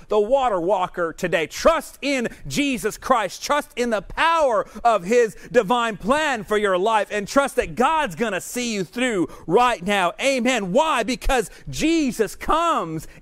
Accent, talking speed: American, 160 wpm